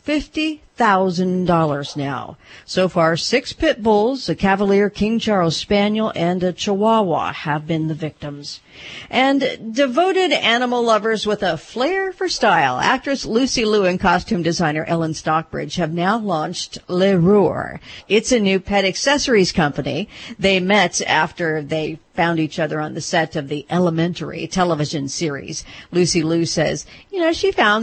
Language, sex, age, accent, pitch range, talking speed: English, female, 50-69, American, 165-225 Hz, 150 wpm